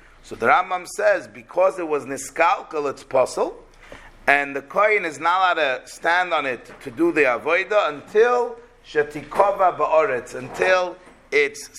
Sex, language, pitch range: male, English, 140-175 Hz